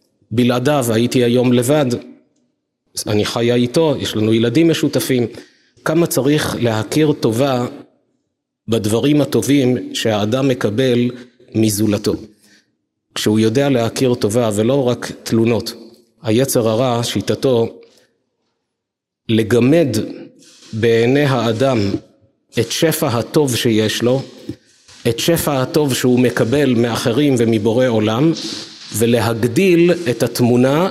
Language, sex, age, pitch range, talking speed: Hebrew, male, 50-69, 115-145 Hz, 95 wpm